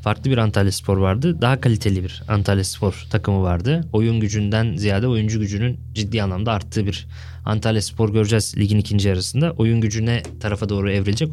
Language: Turkish